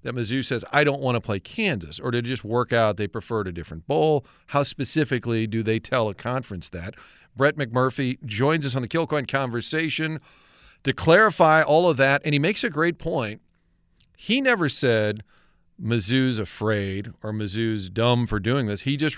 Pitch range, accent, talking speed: 110-145 Hz, American, 190 wpm